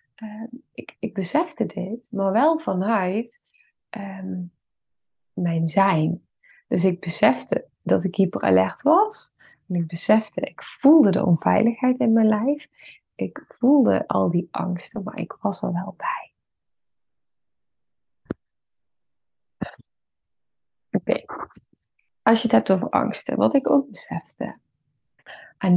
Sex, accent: female, Dutch